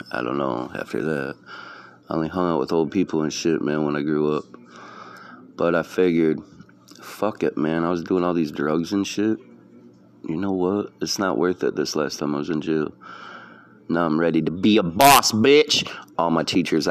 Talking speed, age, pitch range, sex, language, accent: 205 wpm, 30-49, 75-90 Hz, male, English, American